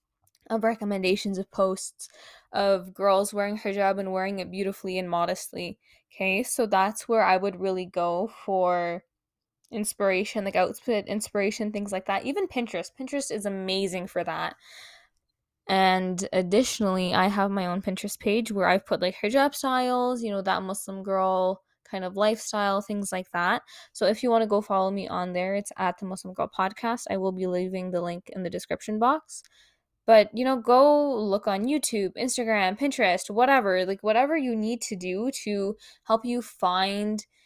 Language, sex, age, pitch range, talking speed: English, female, 10-29, 185-220 Hz, 170 wpm